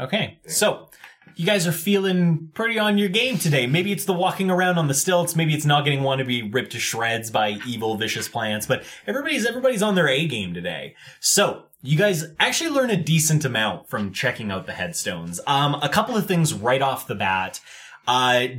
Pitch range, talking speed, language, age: 110-165 Hz, 205 wpm, English, 20-39